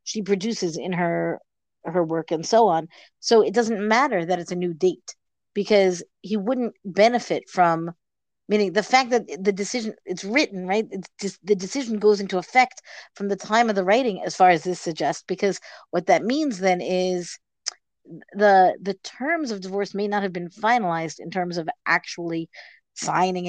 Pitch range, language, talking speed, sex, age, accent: 180-220 Hz, English, 180 wpm, female, 50-69, American